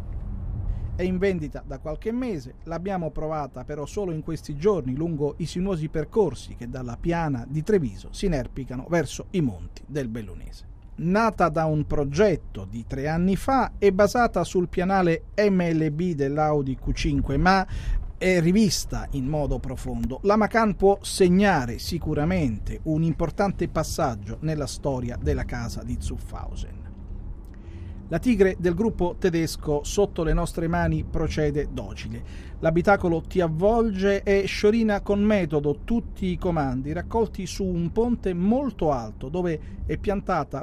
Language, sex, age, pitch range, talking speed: Italian, male, 40-59, 130-190 Hz, 140 wpm